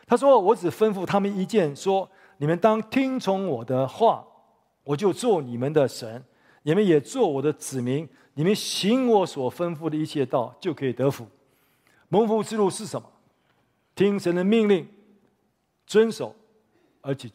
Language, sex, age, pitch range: Chinese, male, 50-69, 150-220 Hz